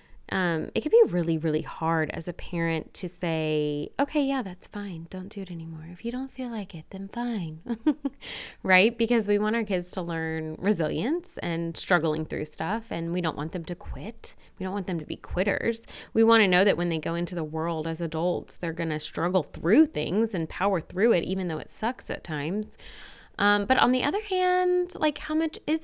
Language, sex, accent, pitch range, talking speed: English, female, American, 165-225 Hz, 220 wpm